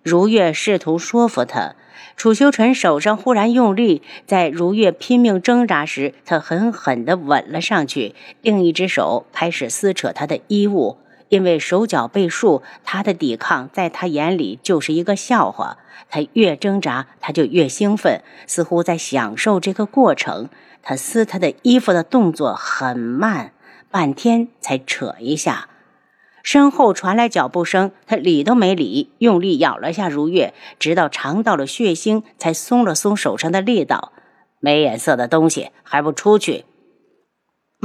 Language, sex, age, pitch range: Chinese, female, 50-69, 175-250 Hz